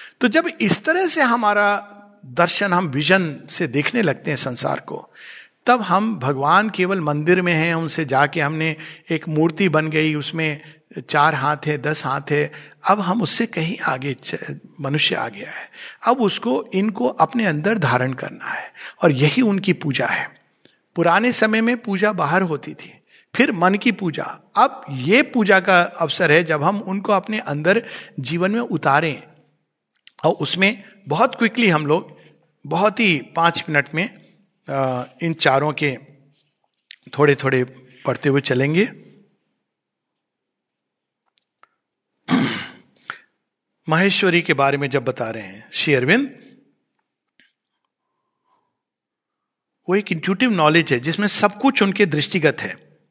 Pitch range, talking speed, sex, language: 150-205 Hz, 135 wpm, male, Hindi